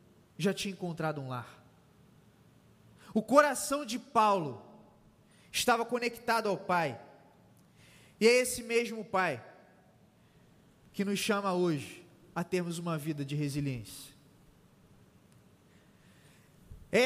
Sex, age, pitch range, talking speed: male, 20-39, 180-270 Hz, 100 wpm